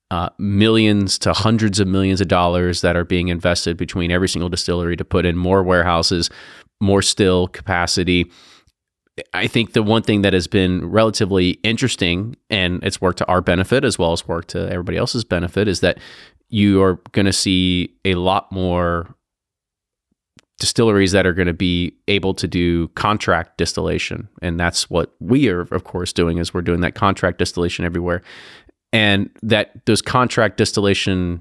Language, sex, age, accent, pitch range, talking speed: English, male, 30-49, American, 90-105 Hz, 170 wpm